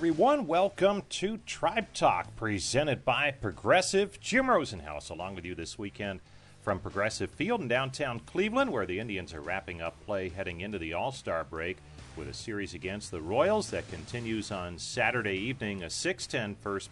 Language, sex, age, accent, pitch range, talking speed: English, male, 40-59, American, 90-125 Hz, 165 wpm